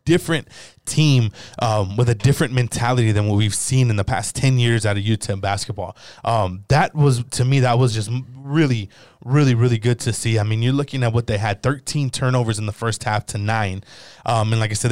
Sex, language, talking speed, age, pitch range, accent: male, English, 220 wpm, 20-39, 115-135 Hz, American